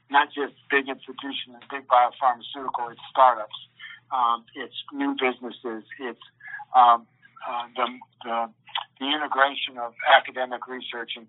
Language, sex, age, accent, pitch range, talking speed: English, male, 50-69, American, 115-140 Hz, 120 wpm